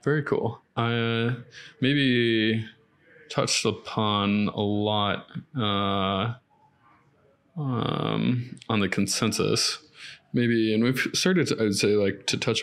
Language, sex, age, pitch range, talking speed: English, male, 20-39, 100-125 Hz, 110 wpm